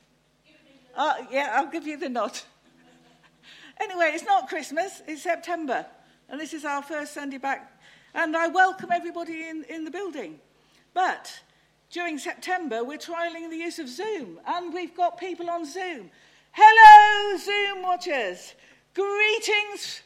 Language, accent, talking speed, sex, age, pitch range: English, British, 140 wpm, female, 50-69, 235-335 Hz